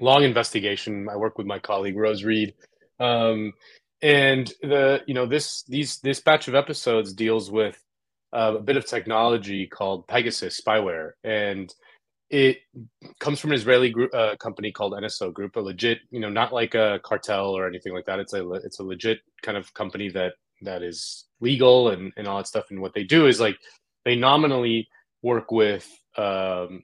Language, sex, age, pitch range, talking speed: English, male, 30-49, 100-130 Hz, 185 wpm